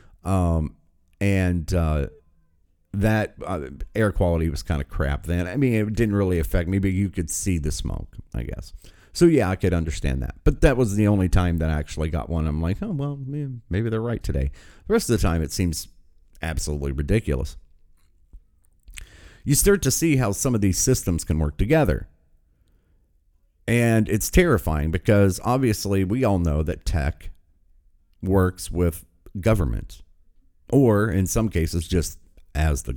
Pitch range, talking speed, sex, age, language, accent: 80-110 Hz, 170 wpm, male, 40-59, English, American